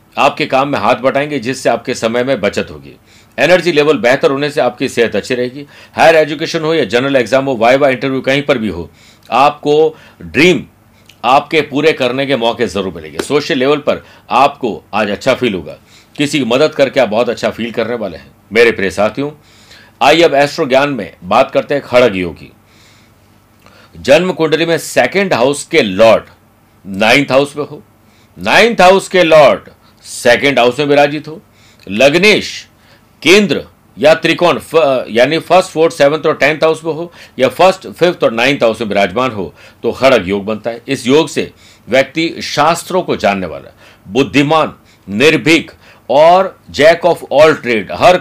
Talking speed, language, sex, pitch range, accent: 165 wpm, Hindi, male, 110-155 Hz, native